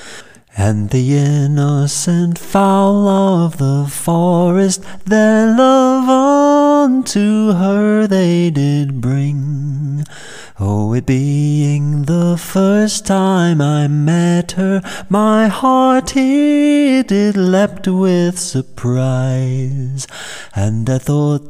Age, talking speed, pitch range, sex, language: 30-49, 90 wpm, 145-215 Hz, male, English